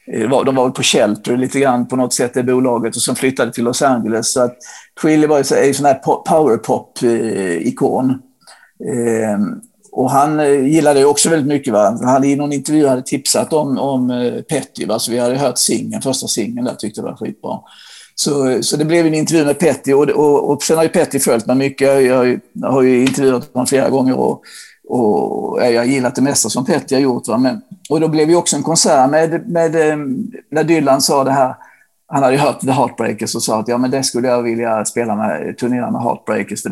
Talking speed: 215 wpm